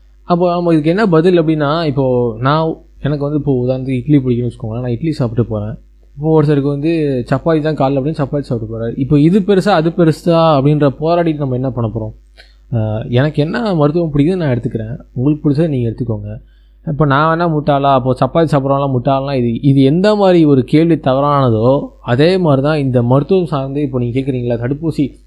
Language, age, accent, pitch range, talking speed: Tamil, 20-39, native, 130-160 Hz, 180 wpm